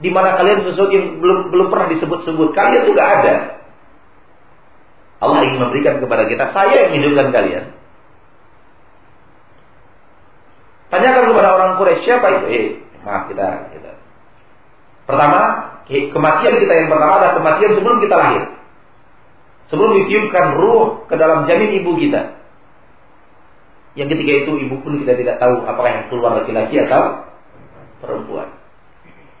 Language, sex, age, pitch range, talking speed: Malay, male, 40-59, 125-185 Hz, 125 wpm